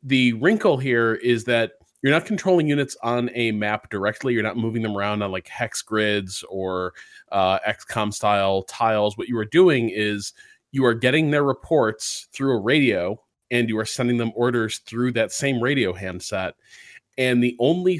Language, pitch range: English, 105-135 Hz